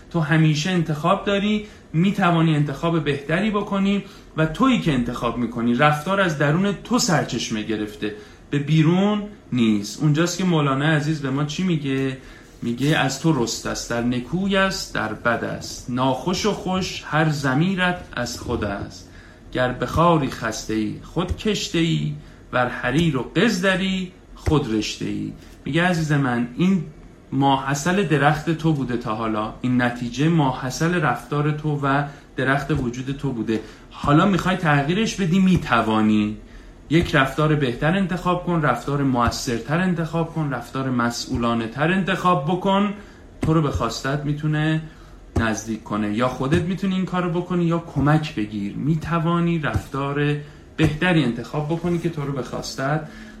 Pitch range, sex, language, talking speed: 120-170 Hz, male, Persian, 140 wpm